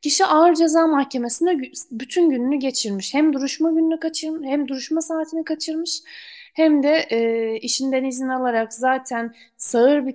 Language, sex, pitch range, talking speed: Turkish, female, 235-295 Hz, 140 wpm